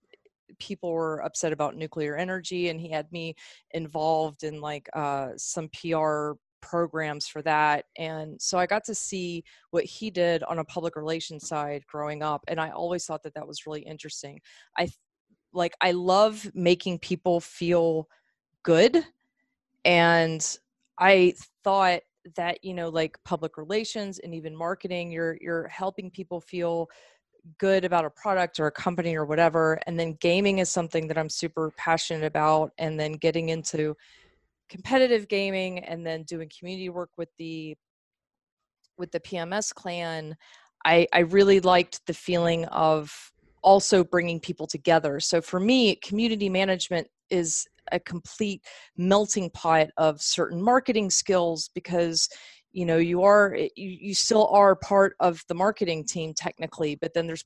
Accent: American